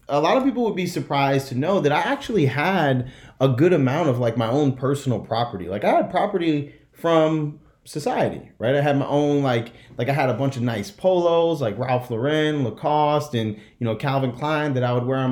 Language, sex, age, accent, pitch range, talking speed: English, male, 30-49, American, 125-175 Hz, 220 wpm